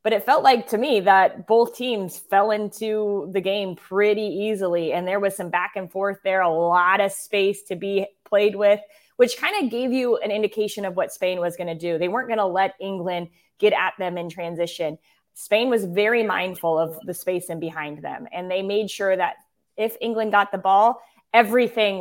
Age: 20-39